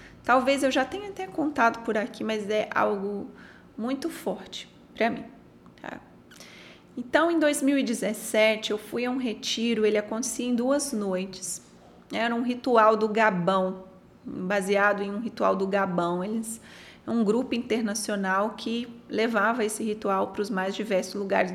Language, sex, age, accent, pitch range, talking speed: Portuguese, female, 20-39, Brazilian, 200-250 Hz, 150 wpm